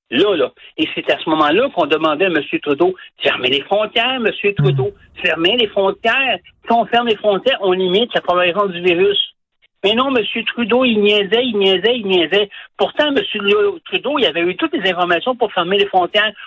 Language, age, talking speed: French, 60-79, 195 wpm